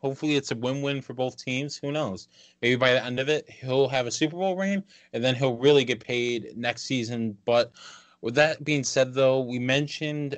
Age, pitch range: 20-39, 125-150 Hz